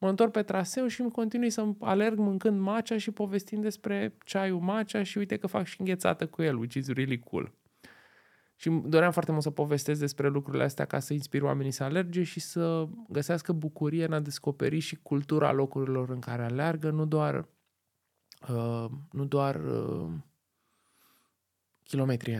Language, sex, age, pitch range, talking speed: Romanian, male, 20-39, 130-180 Hz, 165 wpm